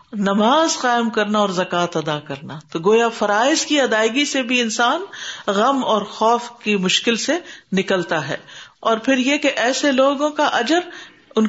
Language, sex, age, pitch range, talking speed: Urdu, female, 50-69, 185-255 Hz, 165 wpm